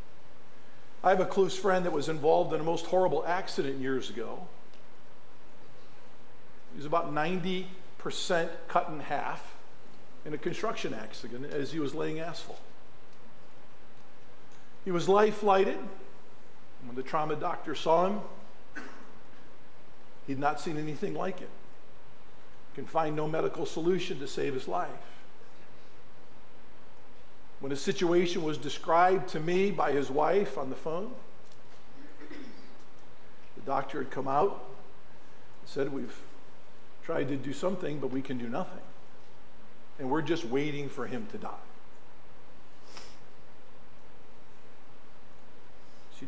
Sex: male